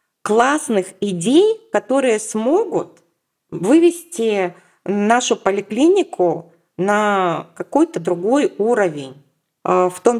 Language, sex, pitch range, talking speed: Russian, female, 175-230 Hz, 75 wpm